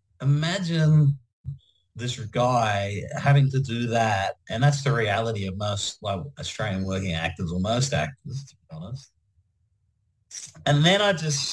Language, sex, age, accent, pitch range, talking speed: English, male, 40-59, Australian, 110-145 Hz, 140 wpm